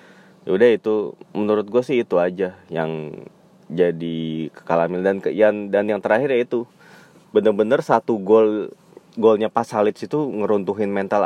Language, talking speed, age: Indonesian, 140 wpm, 20-39